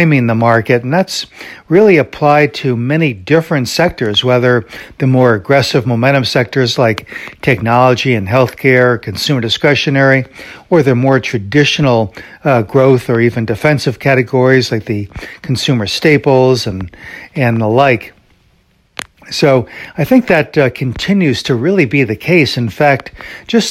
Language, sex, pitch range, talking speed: English, male, 120-145 Hz, 135 wpm